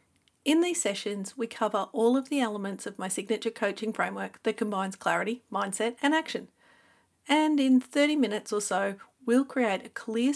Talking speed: 175 wpm